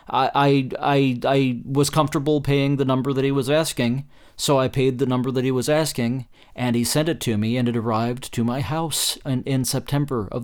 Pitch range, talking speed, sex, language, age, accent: 115-135 Hz, 220 wpm, male, English, 30-49, American